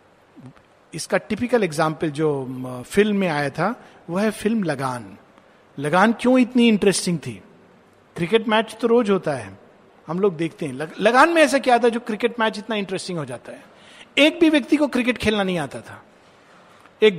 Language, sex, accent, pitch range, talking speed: Hindi, male, native, 185-240 Hz, 175 wpm